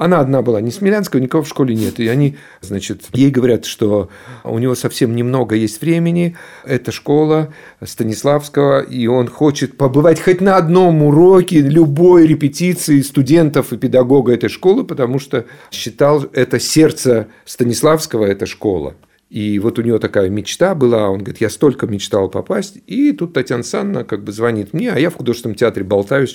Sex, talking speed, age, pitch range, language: male, 170 wpm, 50-69, 115-160 Hz, Russian